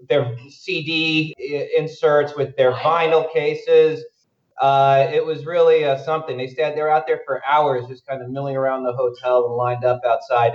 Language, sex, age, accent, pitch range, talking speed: English, male, 30-49, American, 125-155 Hz, 170 wpm